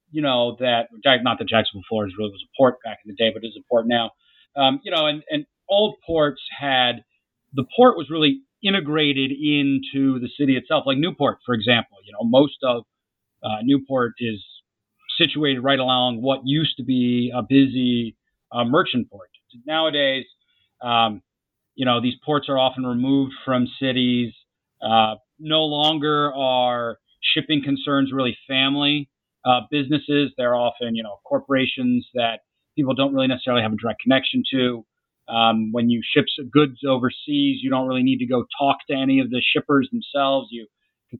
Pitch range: 125-150 Hz